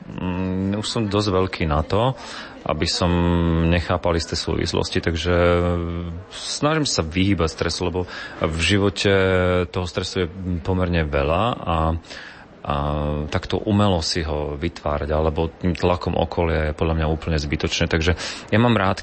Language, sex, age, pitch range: Slovak, male, 30-49, 80-90 Hz